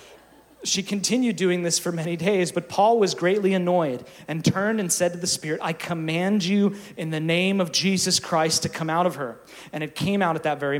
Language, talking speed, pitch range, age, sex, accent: English, 220 wpm, 135-175 Hz, 30-49, male, American